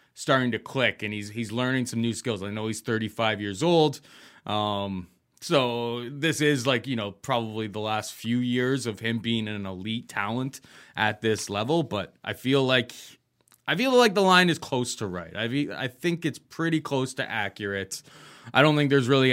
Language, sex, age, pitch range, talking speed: English, male, 20-39, 105-135 Hz, 195 wpm